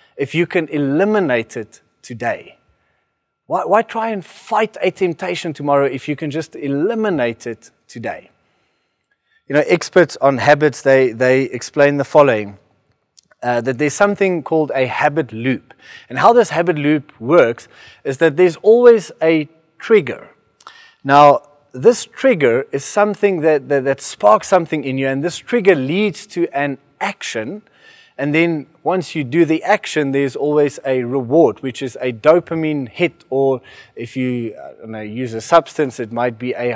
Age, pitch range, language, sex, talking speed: 30-49, 135-180 Hz, English, male, 155 wpm